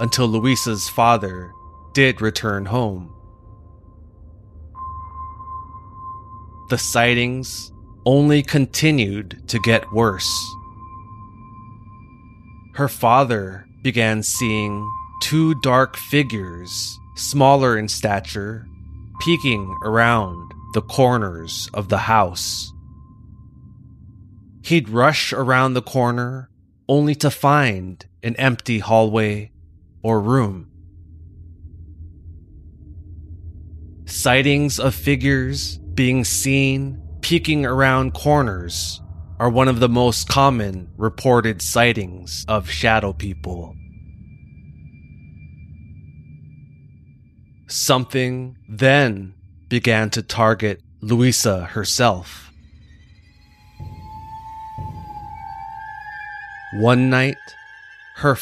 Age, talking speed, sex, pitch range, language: 20-39, 75 wpm, male, 90-130 Hz, English